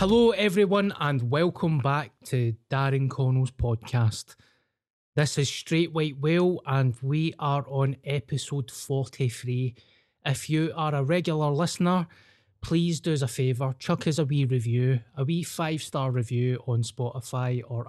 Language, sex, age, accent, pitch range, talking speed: English, male, 20-39, British, 120-145 Hz, 150 wpm